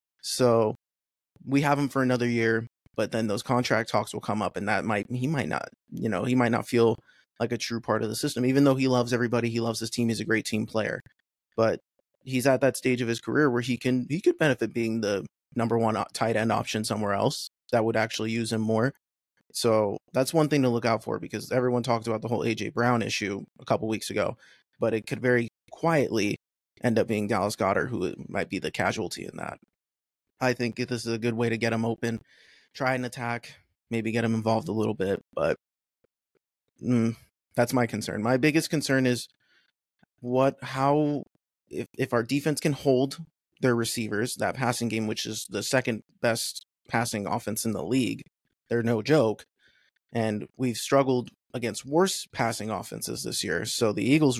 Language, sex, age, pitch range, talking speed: English, male, 20-39, 110-130 Hz, 200 wpm